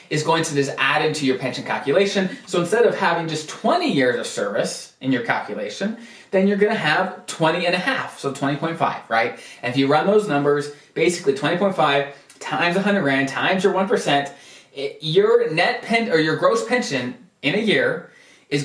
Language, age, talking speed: English, 20-39, 175 wpm